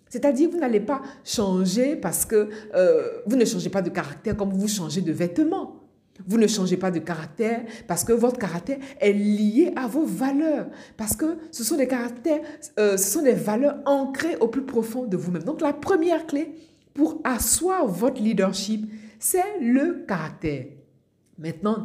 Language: French